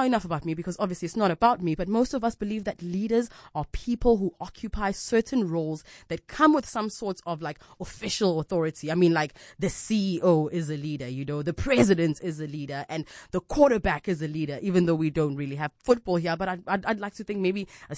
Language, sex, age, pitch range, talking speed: English, female, 20-39, 165-230 Hz, 230 wpm